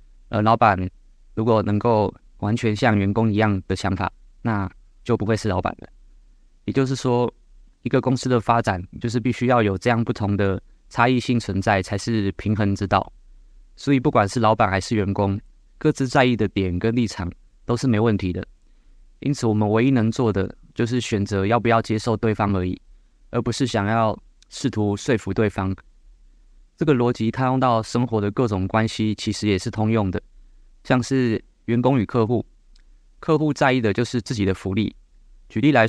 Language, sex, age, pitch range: Chinese, male, 20-39, 100-125 Hz